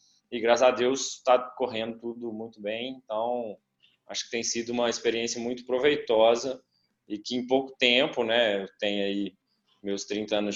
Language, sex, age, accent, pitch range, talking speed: Portuguese, male, 20-39, Brazilian, 110-130 Hz, 170 wpm